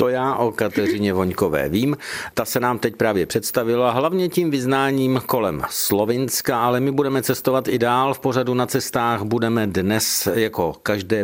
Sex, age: male, 50-69